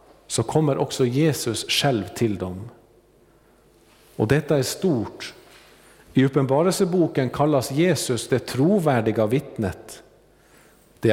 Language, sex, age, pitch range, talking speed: Swedish, male, 50-69, 115-155 Hz, 100 wpm